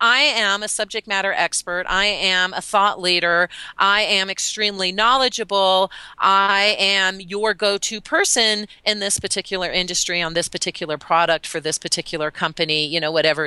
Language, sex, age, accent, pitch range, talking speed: English, female, 40-59, American, 170-205 Hz, 155 wpm